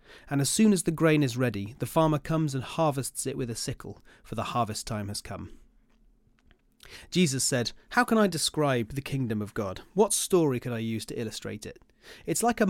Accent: British